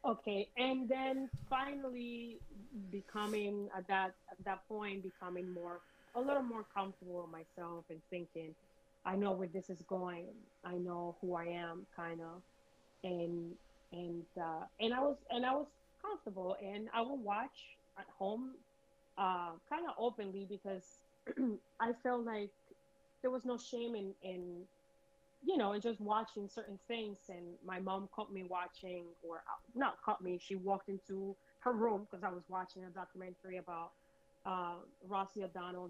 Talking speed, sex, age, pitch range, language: 160 wpm, female, 20-39, 180-225 Hz, English